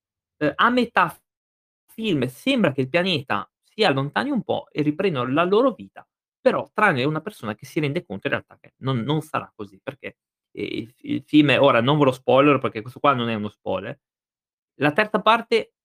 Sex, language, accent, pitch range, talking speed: male, Italian, native, 125-175 Hz, 195 wpm